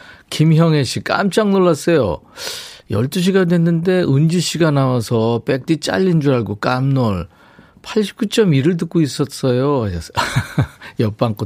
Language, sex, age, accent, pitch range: Korean, male, 40-59, native, 115-165 Hz